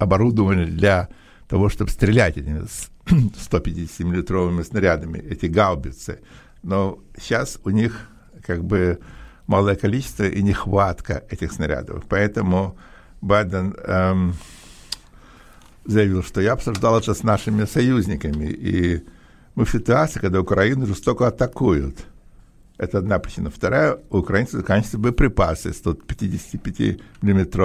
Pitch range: 90-105 Hz